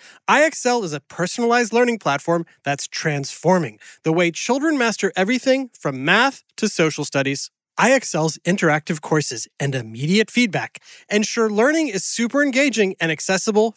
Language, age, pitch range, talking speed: English, 30-49, 165-240 Hz, 135 wpm